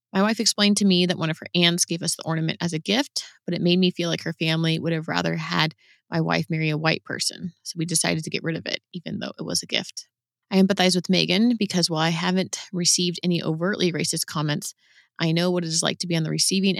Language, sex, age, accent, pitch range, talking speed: English, female, 20-39, American, 160-180 Hz, 260 wpm